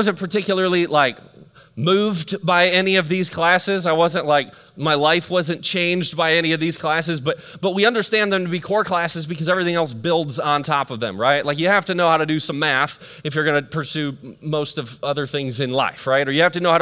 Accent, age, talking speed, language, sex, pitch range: American, 30-49, 245 wpm, English, male, 160-195 Hz